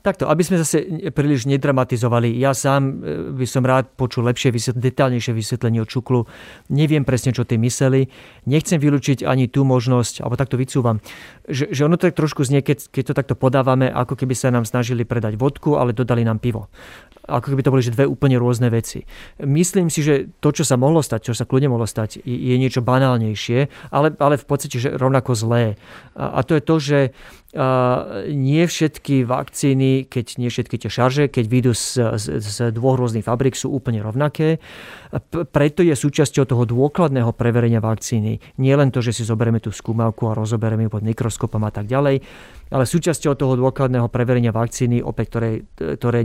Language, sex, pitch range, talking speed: Slovak, male, 120-140 Hz, 180 wpm